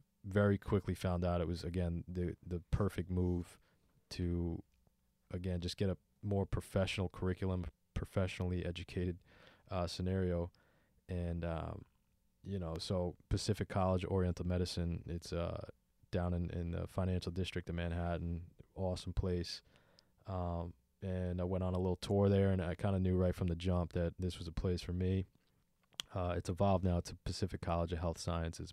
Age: 20-39